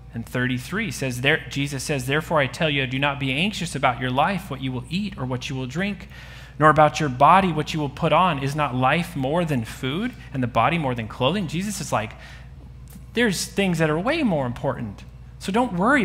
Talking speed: 225 wpm